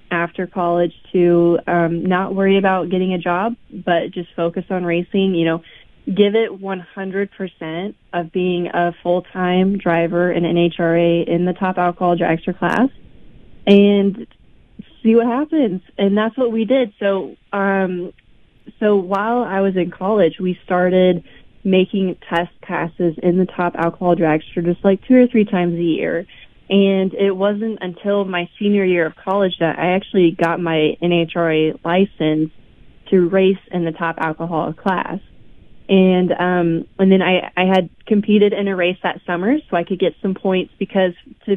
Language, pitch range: English, 170-195 Hz